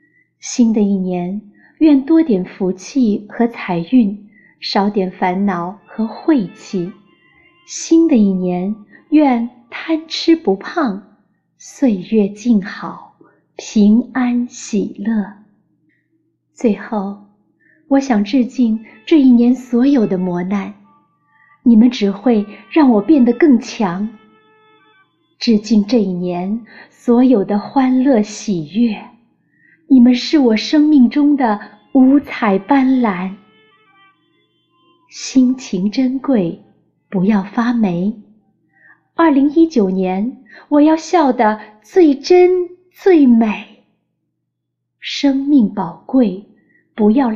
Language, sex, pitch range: Chinese, female, 205-275 Hz